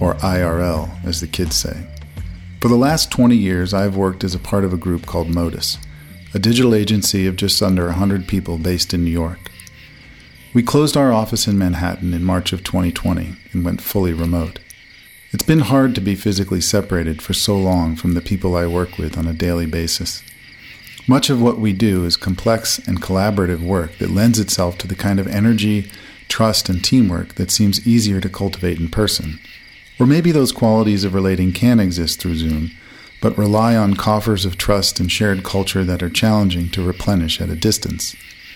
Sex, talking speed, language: male, 190 wpm, English